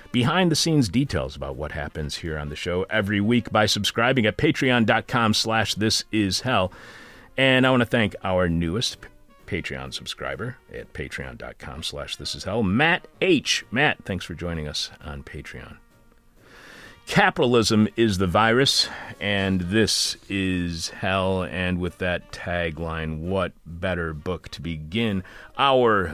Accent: American